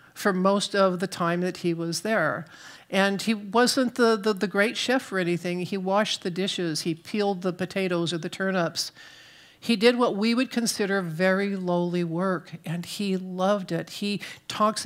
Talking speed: 180 wpm